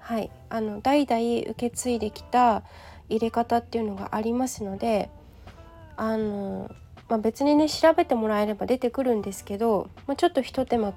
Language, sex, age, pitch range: Japanese, female, 20-39, 215-280 Hz